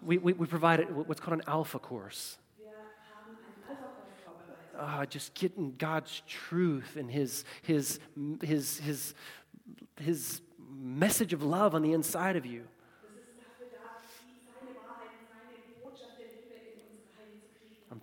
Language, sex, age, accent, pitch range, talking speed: German, male, 40-59, American, 165-220 Hz, 100 wpm